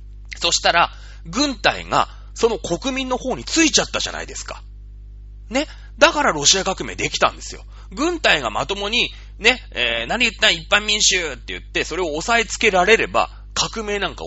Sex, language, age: male, Japanese, 30-49